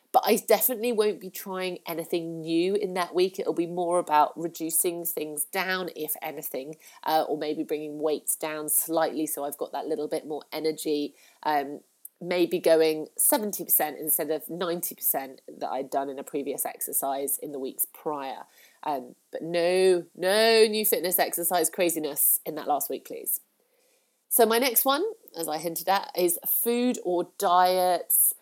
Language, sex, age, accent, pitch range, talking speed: English, female, 30-49, British, 160-205 Hz, 165 wpm